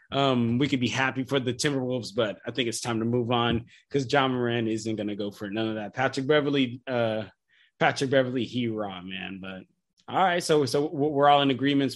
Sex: male